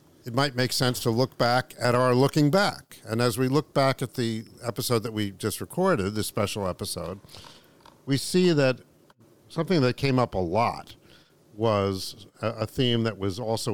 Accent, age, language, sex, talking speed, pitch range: American, 50-69, English, male, 180 wpm, 100-130 Hz